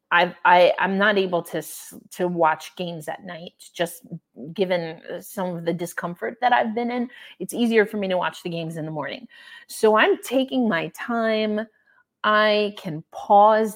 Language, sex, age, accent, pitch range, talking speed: English, female, 30-49, American, 180-245 Hz, 175 wpm